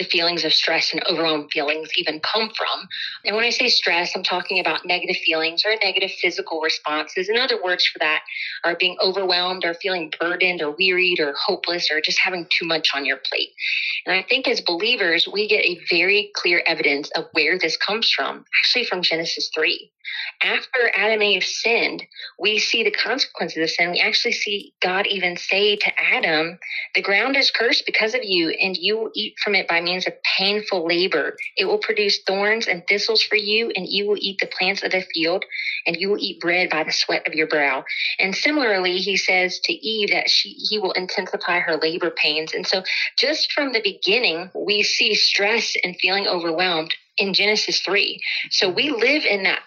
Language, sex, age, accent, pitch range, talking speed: English, female, 30-49, American, 170-220 Hz, 200 wpm